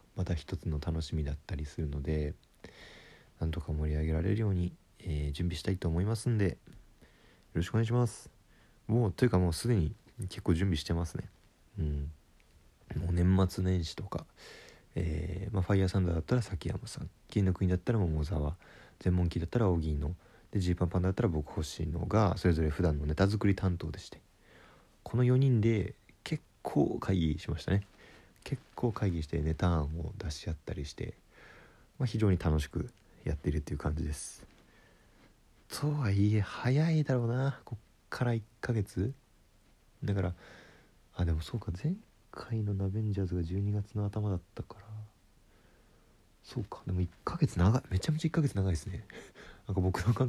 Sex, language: male, Japanese